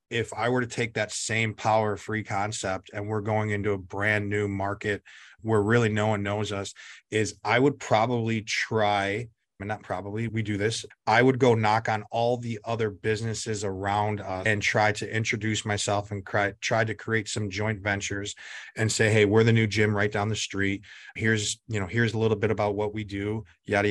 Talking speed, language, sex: 210 wpm, English, male